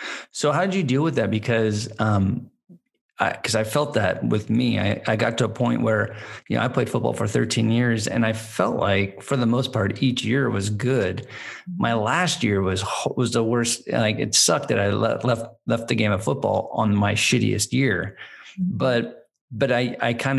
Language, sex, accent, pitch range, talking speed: English, male, American, 105-130 Hz, 210 wpm